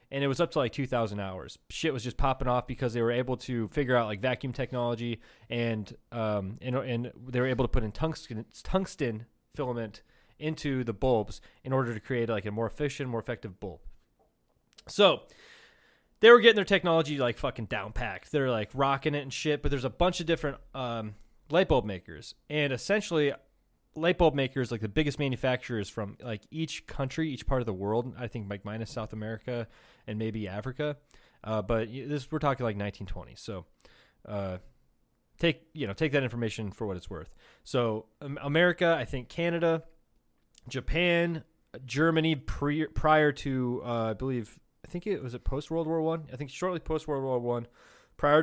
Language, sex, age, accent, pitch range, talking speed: English, male, 20-39, American, 115-150 Hz, 190 wpm